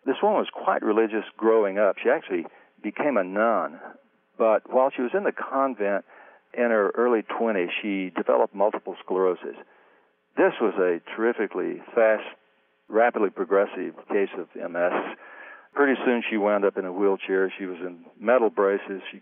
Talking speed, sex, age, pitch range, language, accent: 160 wpm, male, 60-79, 95-115 Hz, English, American